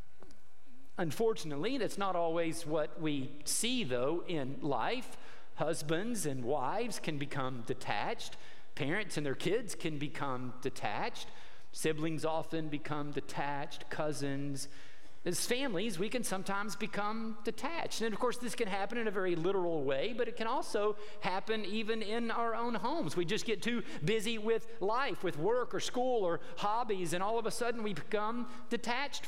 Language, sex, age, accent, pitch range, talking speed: English, male, 50-69, American, 175-250 Hz, 160 wpm